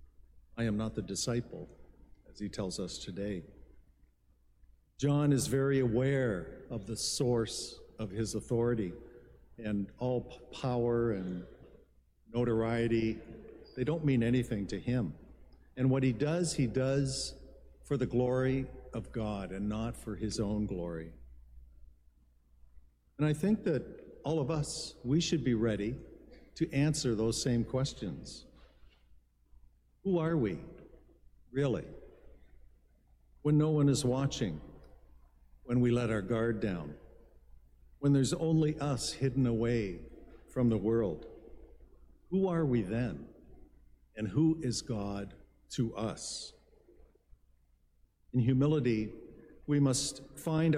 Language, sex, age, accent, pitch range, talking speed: English, male, 50-69, American, 85-130 Hz, 120 wpm